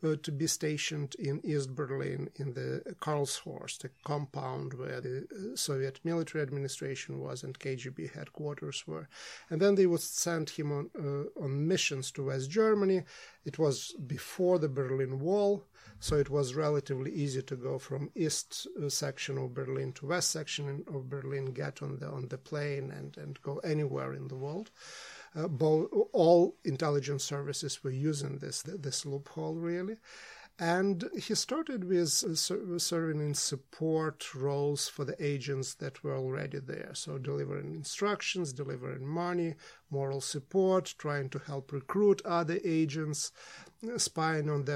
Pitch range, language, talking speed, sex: 140-170 Hz, English, 150 wpm, male